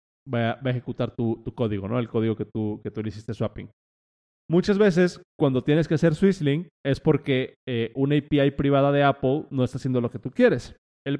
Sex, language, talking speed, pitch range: male, Spanish, 210 wpm, 115-155 Hz